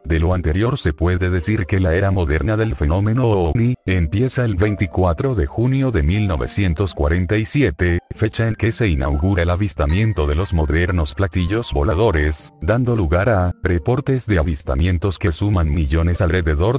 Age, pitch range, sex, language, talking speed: 40-59, 85-105 Hz, male, Spanish, 150 wpm